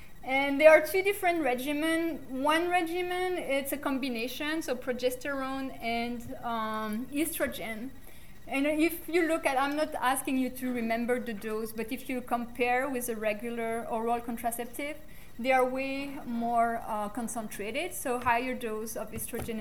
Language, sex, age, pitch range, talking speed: English, female, 30-49, 235-280 Hz, 150 wpm